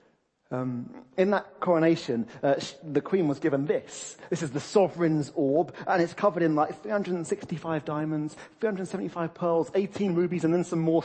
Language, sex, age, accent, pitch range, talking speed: English, male, 30-49, British, 145-195 Hz, 165 wpm